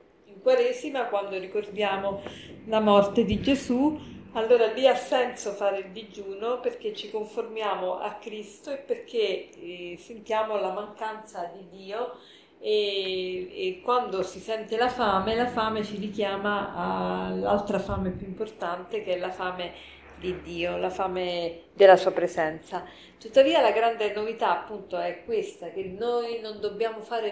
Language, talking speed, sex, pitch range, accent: Italian, 145 wpm, female, 185-230 Hz, native